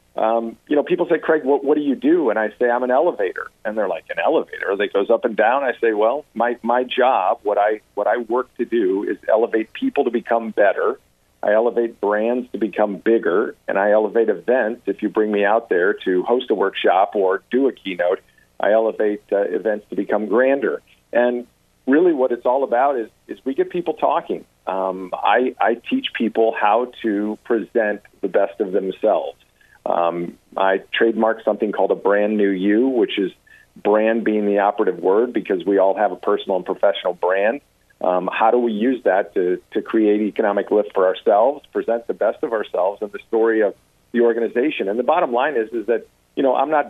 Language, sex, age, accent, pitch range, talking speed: English, male, 50-69, American, 105-135 Hz, 205 wpm